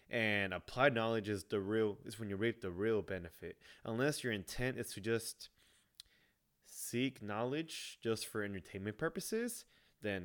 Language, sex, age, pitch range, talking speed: English, male, 20-39, 100-125 Hz, 150 wpm